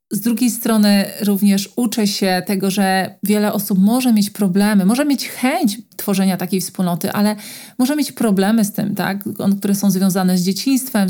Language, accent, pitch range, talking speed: Polish, native, 195-220 Hz, 160 wpm